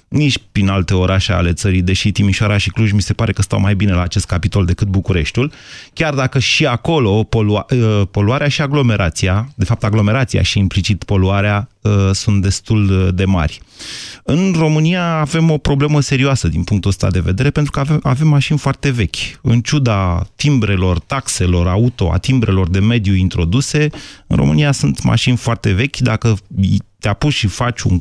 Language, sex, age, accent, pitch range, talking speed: Romanian, male, 30-49, native, 100-130 Hz, 165 wpm